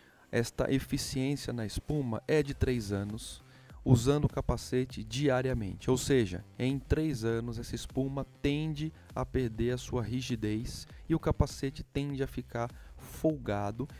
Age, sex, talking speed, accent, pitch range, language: 30-49, male, 135 wpm, Brazilian, 110-145 Hz, Portuguese